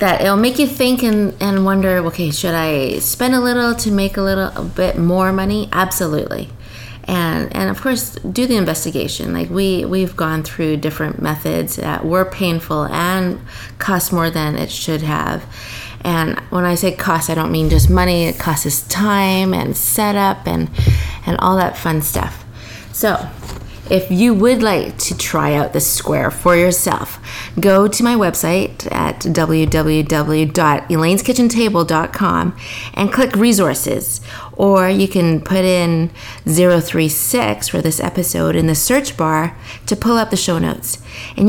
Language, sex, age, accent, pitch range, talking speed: English, female, 30-49, American, 145-195 Hz, 160 wpm